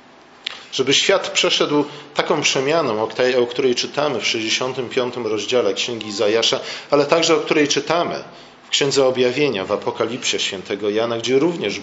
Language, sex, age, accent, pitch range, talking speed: Polish, male, 40-59, native, 120-160 Hz, 135 wpm